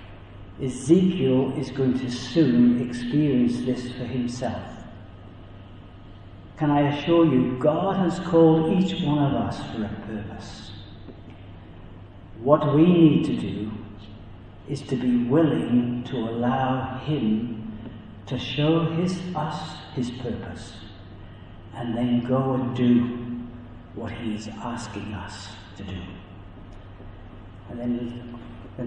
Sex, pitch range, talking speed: male, 105-145 Hz, 115 wpm